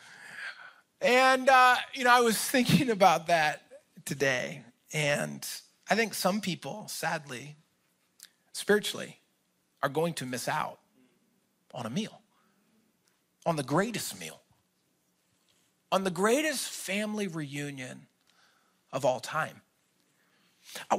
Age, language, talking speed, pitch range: 40-59, English, 110 wpm, 145-235 Hz